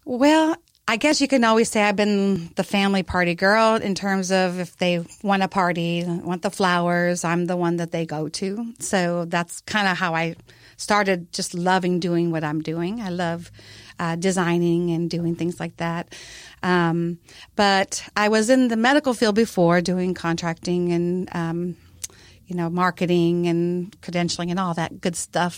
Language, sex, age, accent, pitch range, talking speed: English, female, 40-59, American, 170-205 Hz, 180 wpm